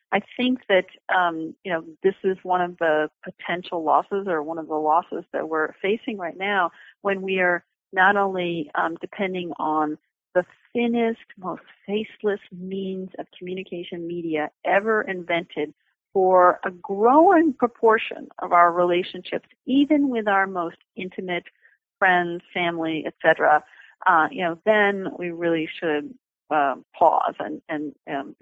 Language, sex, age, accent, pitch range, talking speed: English, female, 40-59, American, 165-195 Hz, 145 wpm